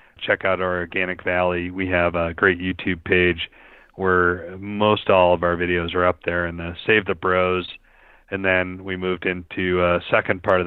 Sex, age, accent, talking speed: male, 40-59, American, 190 wpm